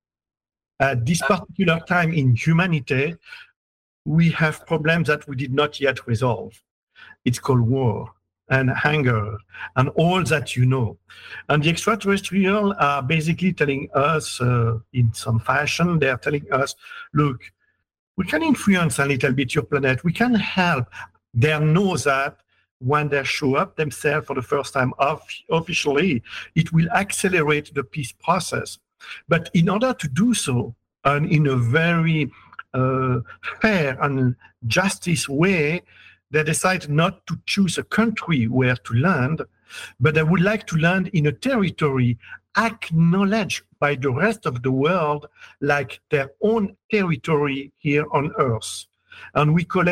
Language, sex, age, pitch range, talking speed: English, male, 50-69, 135-175 Hz, 150 wpm